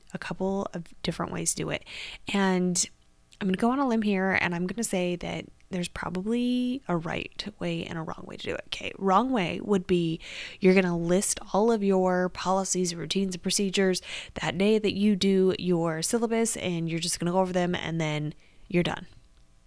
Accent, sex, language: American, female, English